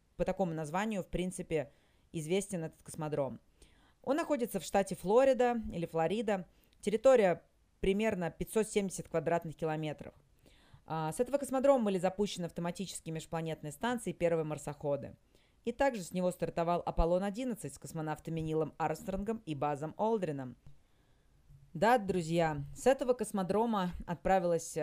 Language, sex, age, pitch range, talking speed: Russian, female, 30-49, 160-200 Hz, 120 wpm